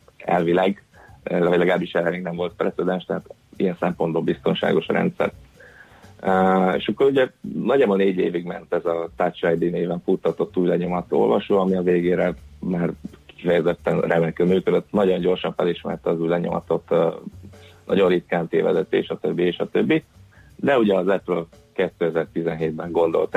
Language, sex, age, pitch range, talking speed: Hungarian, male, 30-49, 85-95 Hz, 145 wpm